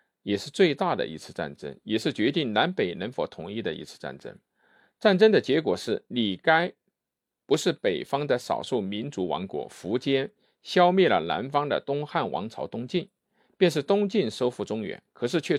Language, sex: Chinese, male